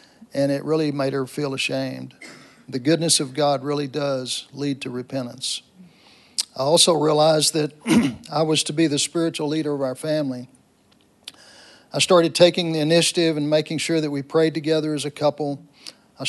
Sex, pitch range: male, 140-160 Hz